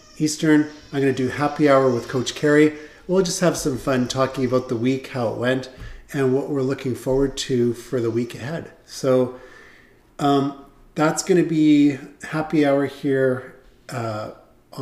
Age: 40-59